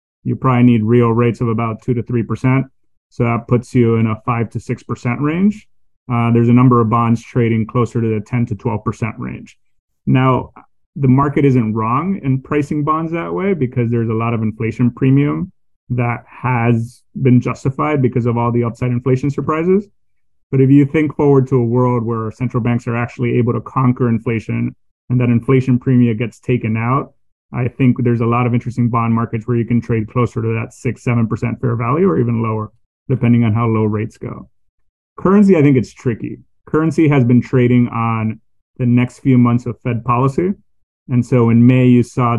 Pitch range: 115-125 Hz